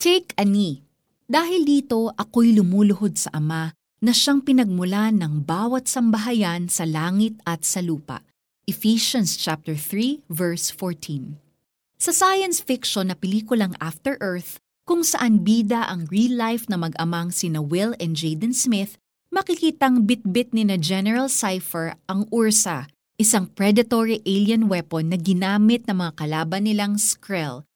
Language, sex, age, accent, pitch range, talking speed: Filipino, female, 30-49, native, 175-235 Hz, 130 wpm